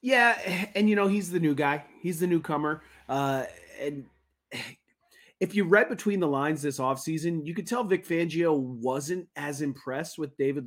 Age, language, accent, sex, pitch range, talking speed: 30-49, English, American, male, 130-170 Hz, 180 wpm